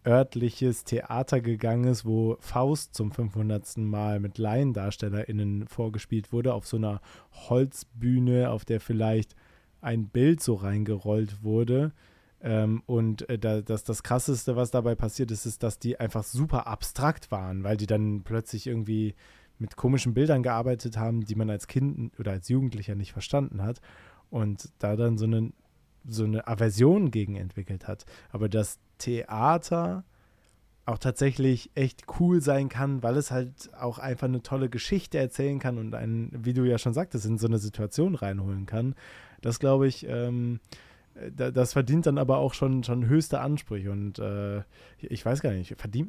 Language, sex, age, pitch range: German, male, 20-39, 110-130 Hz